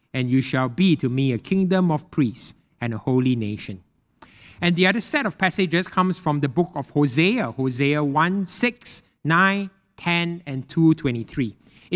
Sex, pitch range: male, 140-195 Hz